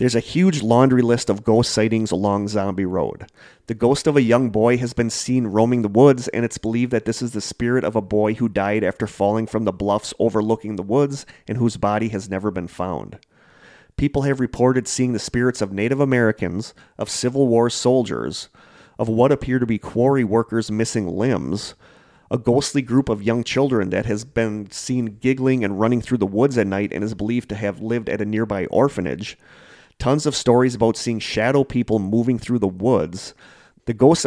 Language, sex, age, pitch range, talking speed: English, male, 30-49, 105-125 Hz, 200 wpm